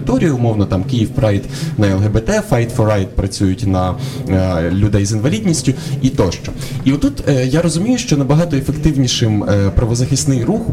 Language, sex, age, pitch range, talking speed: Ukrainian, male, 20-39, 105-140 Hz, 150 wpm